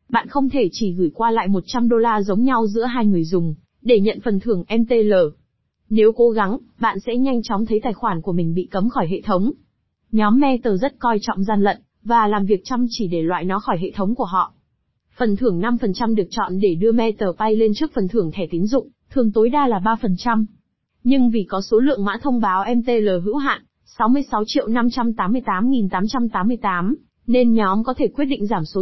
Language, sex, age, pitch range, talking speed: Vietnamese, female, 20-39, 205-245 Hz, 205 wpm